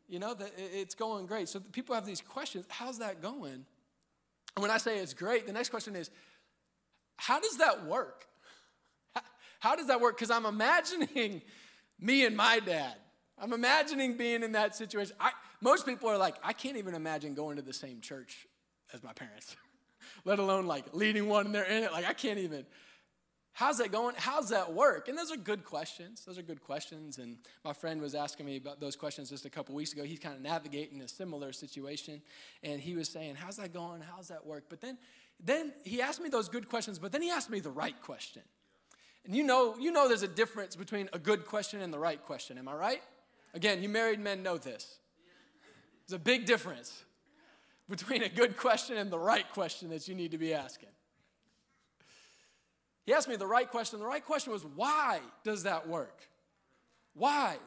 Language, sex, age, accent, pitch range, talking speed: English, male, 20-39, American, 175-250 Hz, 200 wpm